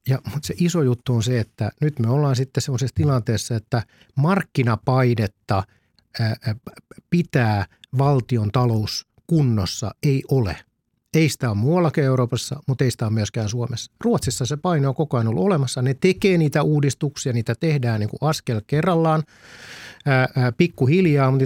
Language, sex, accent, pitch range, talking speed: Finnish, male, native, 115-145 Hz, 155 wpm